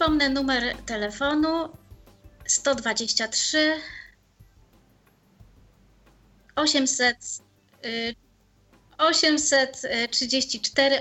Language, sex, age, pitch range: Polish, female, 30-49, 230-280 Hz